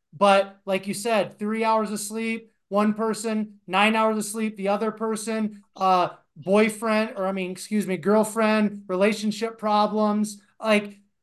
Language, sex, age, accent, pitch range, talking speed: English, male, 30-49, American, 200-230 Hz, 150 wpm